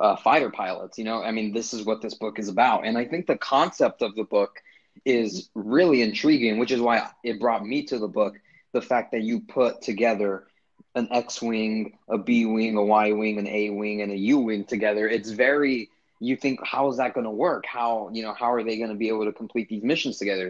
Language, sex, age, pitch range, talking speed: English, male, 20-39, 105-130 Hz, 240 wpm